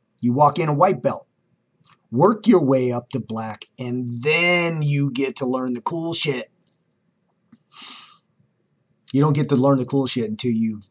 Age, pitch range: 40-59, 120-140 Hz